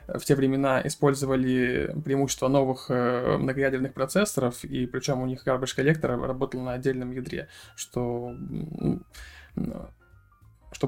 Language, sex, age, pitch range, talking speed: Russian, male, 20-39, 125-145 Hz, 110 wpm